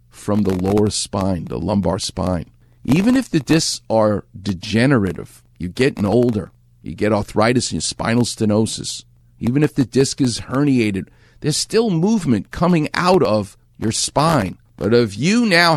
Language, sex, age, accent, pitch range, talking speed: English, male, 50-69, American, 105-140 Hz, 155 wpm